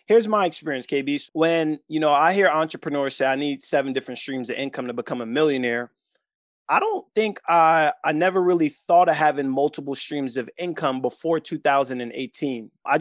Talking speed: 180 wpm